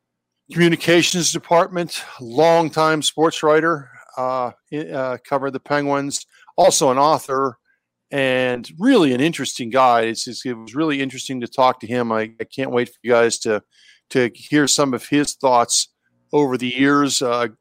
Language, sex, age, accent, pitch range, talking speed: English, male, 50-69, American, 125-160 Hz, 150 wpm